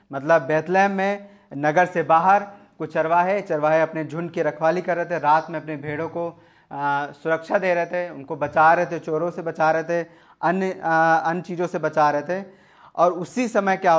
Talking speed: 195 wpm